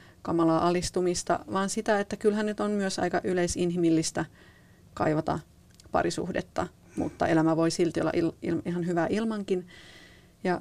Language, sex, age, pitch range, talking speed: Finnish, female, 30-49, 175-200 Hz, 135 wpm